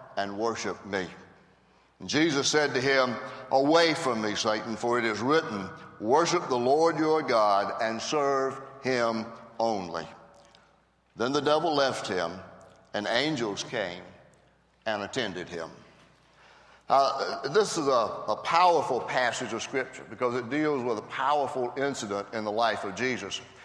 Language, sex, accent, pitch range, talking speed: English, male, American, 120-155 Hz, 145 wpm